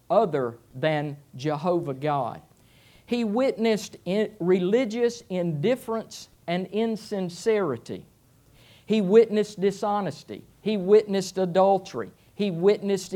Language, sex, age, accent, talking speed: English, male, 50-69, American, 80 wpm